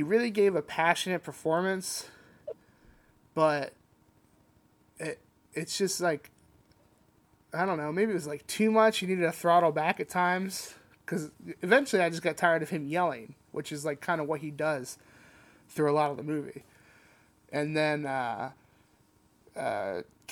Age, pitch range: 20-39, 150-175 Hz